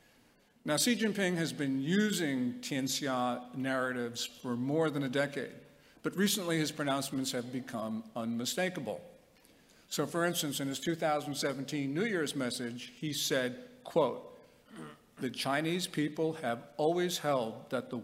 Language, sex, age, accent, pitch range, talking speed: English, male, 50-69, American, 130-170 Hz, 135 wpm